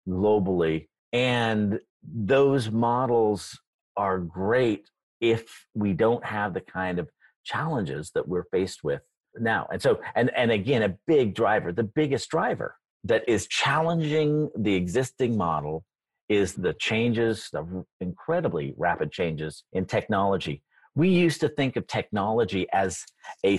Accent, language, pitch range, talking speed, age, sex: American, English, 95-130 Hz, 135 wpm, 50-69, male